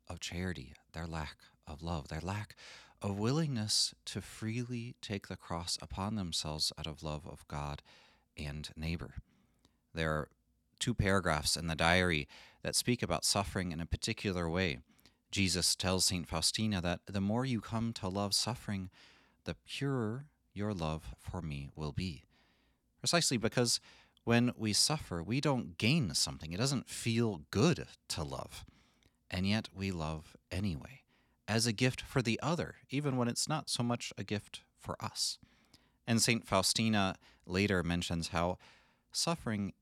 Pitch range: 85-110 Hz